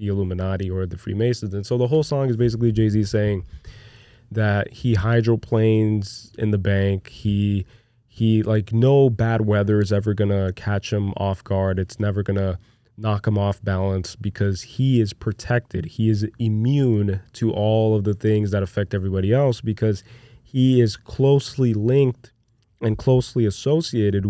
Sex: male